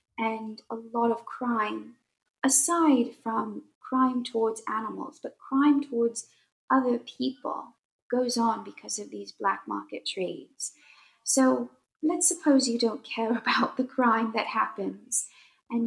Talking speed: 130 wpm